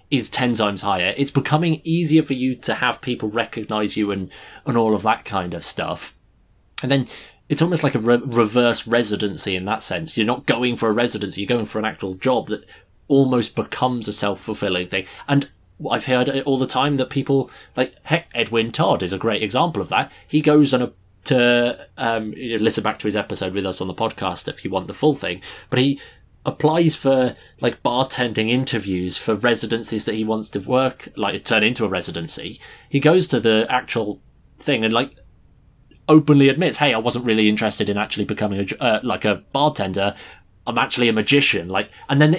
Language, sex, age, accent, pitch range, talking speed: English, male, 20-39, British, 105-140 Hz, 200 wpm